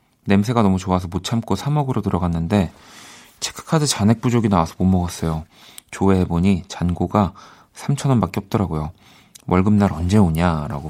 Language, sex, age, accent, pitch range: Korean, male, 40-59, native, 90-115 Hz